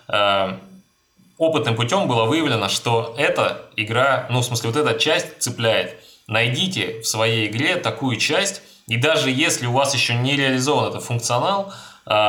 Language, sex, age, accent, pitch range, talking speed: Russian, male, 20-39, native, 110-140 Hz, 145 wpm